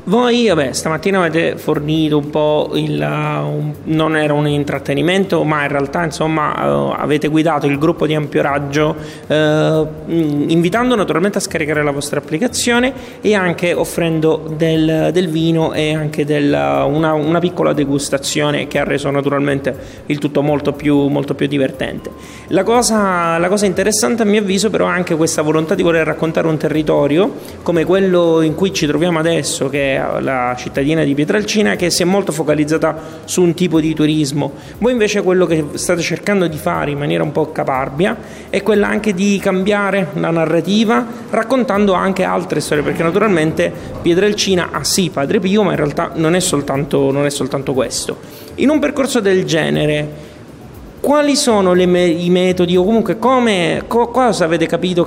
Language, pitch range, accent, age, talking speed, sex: Italian, 150-190 Hz, native, 30-49, 165 wpm, male